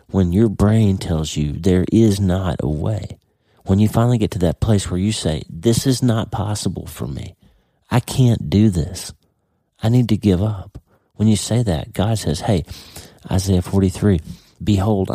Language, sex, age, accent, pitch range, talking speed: English, male, 40-59, American, 85-110 Hz, 180 wpm